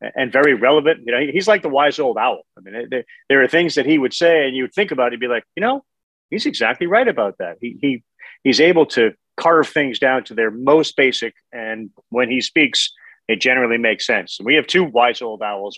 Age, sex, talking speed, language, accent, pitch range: 40-59, male, 240 wpm, English, American, 125-160 Hz